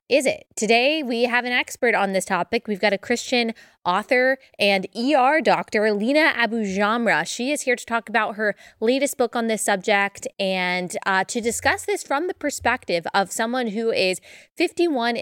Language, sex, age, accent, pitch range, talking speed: English, female, 20-39, American, 195-250 Hz, 180 wpm